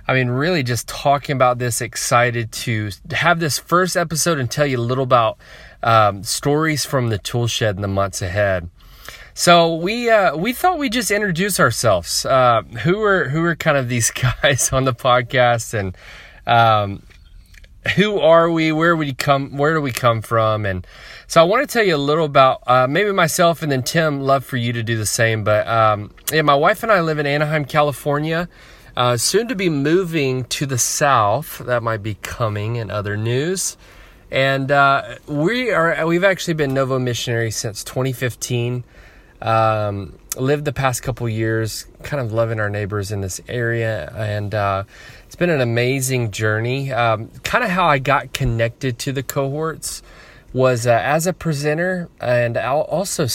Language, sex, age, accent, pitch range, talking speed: English, male, 20-39, American, 115-155 Hz, 185 wpm